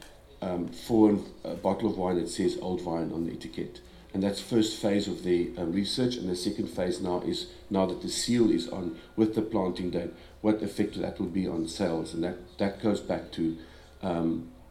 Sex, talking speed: male, 210 wpm